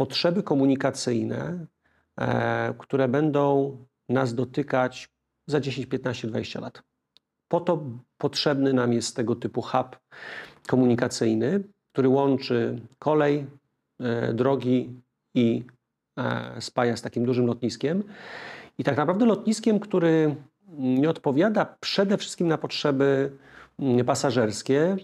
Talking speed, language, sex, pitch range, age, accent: 100 wpm, Polish, male, 120-140 Hz, 40-59, native